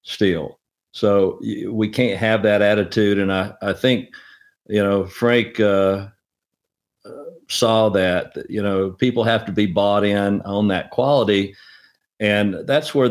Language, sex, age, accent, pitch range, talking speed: English, male, 50-69, American, 95-110 Hz, 145 wpm